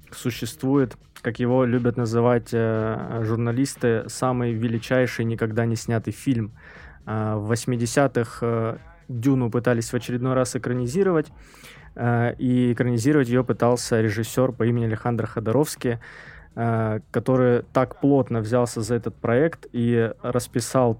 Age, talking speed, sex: 20-39, 120 wpm, male